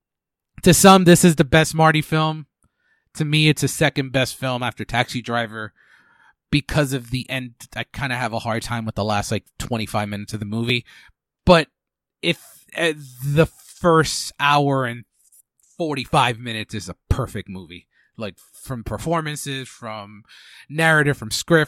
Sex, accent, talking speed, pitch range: male, American, 160 wpm, 110-155 Hz